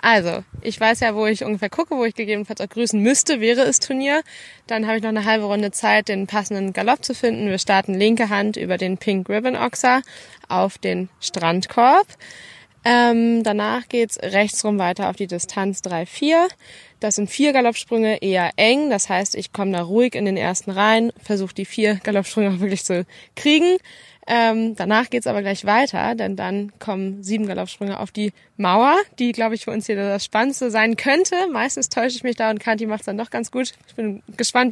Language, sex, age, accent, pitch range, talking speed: German, female, 20-39, German, 195-235 Hz, 200 wpm